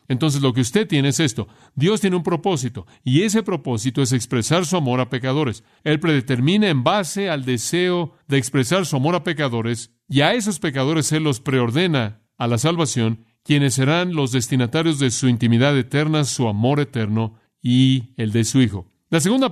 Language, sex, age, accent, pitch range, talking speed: Spanish, male, 40-59, Mexican, 120-155 Hz, 185 wpm